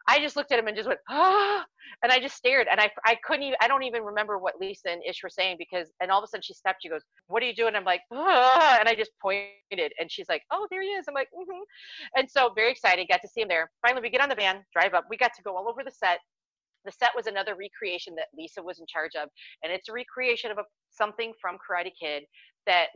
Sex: female